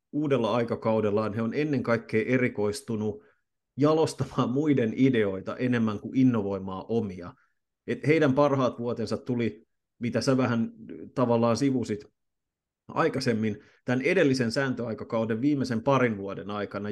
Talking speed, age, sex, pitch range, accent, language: 115 wpm, 30-49, male, 110-130 Hz, native, Finnish